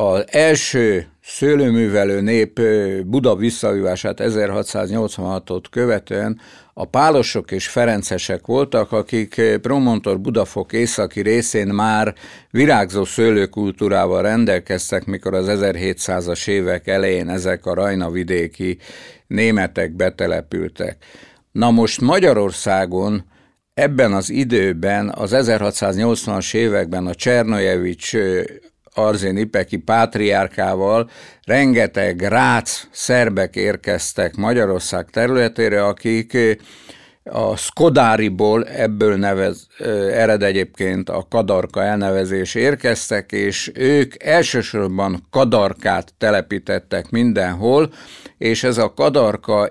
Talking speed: 90 wpm